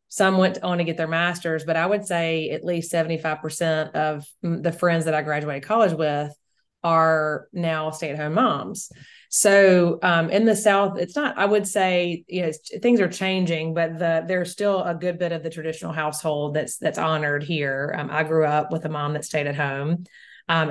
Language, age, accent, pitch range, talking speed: English, 30-49, American, 155-180 Hz, 195 wpm